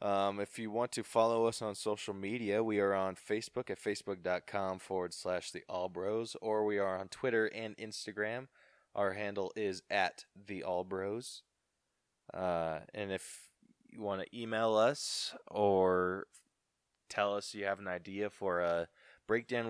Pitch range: 95-110 Hz